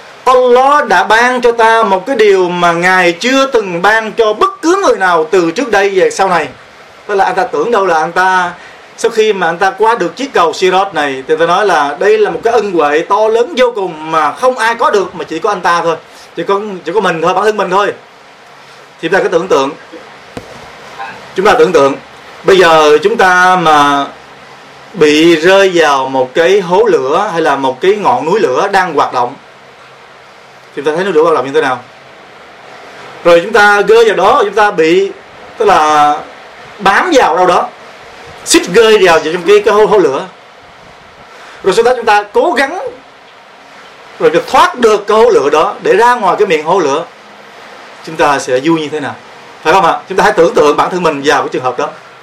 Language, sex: Vietnamese, male